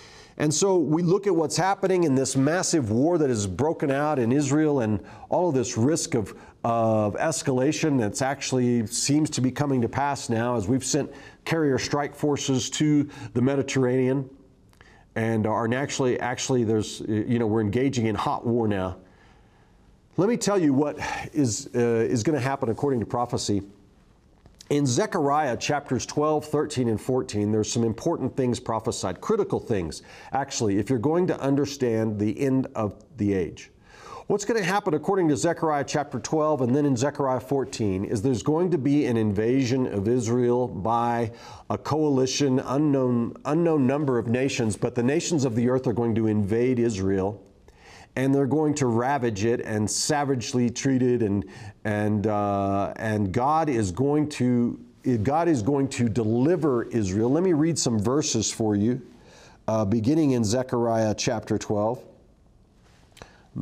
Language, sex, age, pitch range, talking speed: English, male, 40-59, 110-145 Hz, 165 wpm